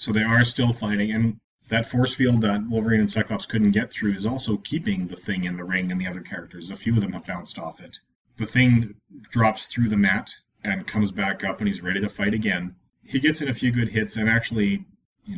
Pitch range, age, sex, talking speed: 100-125 Hz, 30-49, male, 240 wpm